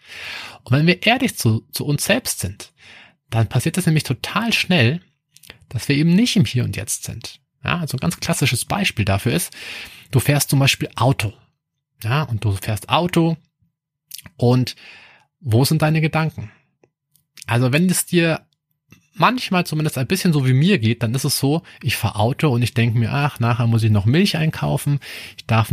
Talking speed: 185 wpm